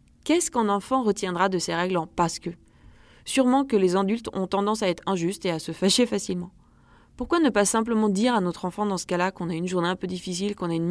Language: French